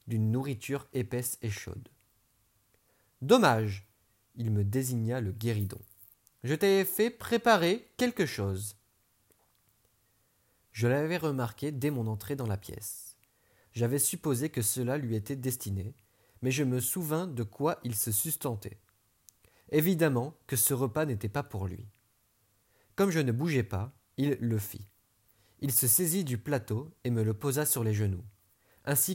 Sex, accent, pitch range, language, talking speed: male, French, 105-135 Hz, French, 145 wpm